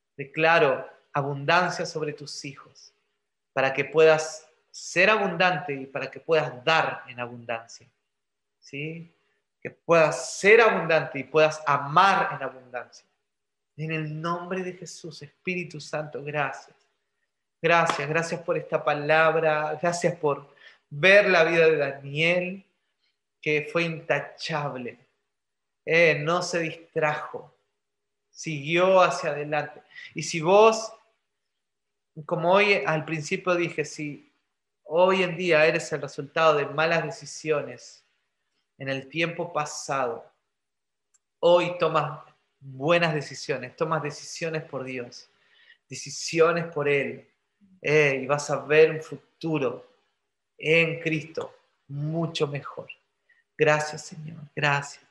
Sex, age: male, 30-49